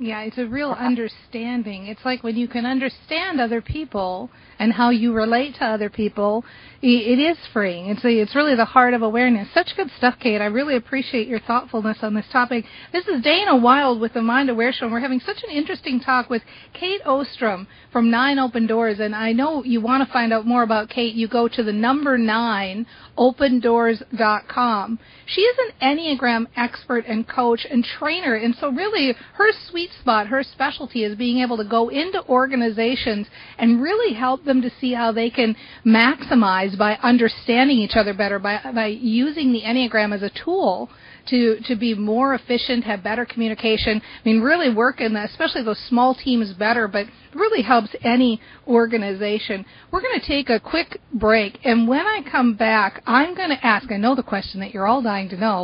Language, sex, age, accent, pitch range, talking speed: English, female, 40-59, American, 220-260 Hz, 195 wpm